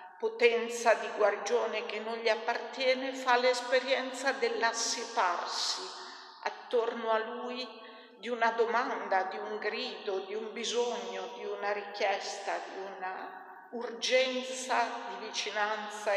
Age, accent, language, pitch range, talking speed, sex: 50-69, native, Italian, 200-245 Hz, 110 wpm, female